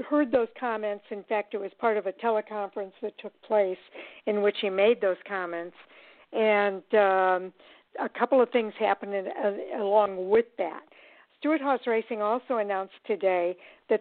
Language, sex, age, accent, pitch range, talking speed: English, female, 60-79, American, 195-235 Hz, 165 wpm